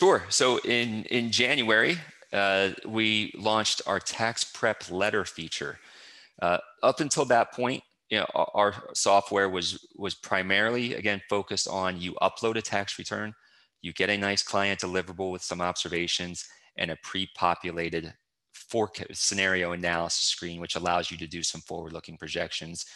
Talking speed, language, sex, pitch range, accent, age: 150 wpm, English, male, 90-100 Hz, American, 30-49